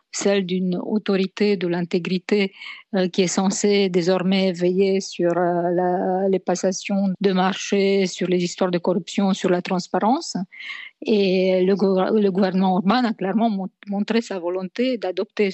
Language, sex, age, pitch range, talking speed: French, female, 50-69, 185-215 Hz, 145 wpm